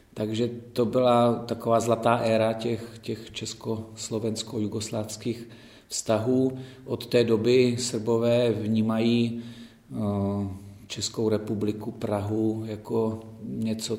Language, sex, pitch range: Czech, male, 110-120 Hz